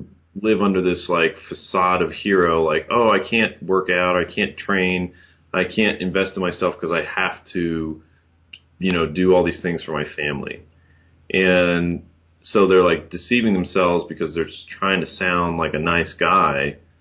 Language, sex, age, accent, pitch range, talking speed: English, male, 30-49, American, 80-95 Hz, 175 wpm